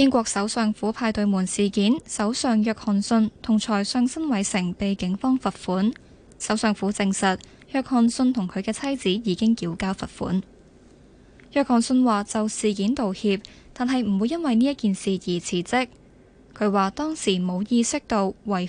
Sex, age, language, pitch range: female, 10-29, Chinese, 195-245 Hz